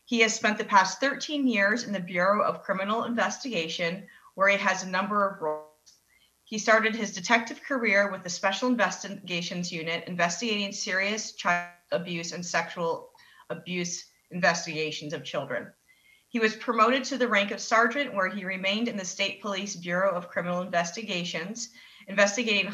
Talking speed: 160 wpm